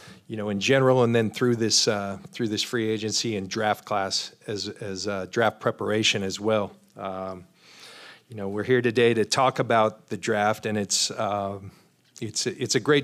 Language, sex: English, male